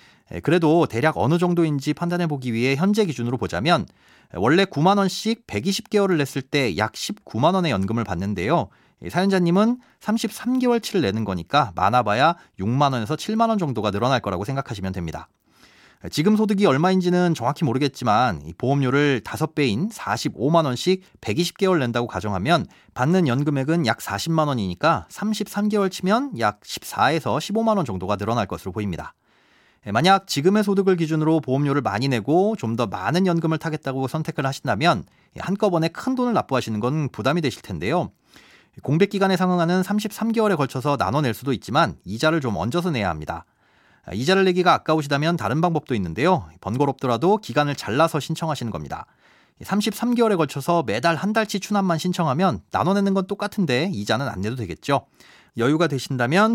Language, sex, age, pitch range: Korean, male, 30-49, 120-190 Hz